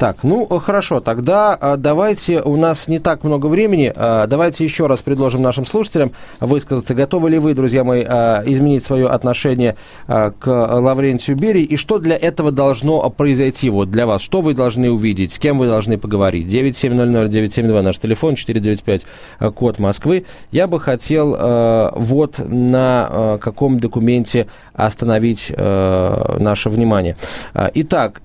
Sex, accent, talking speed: male, native, 135 wpm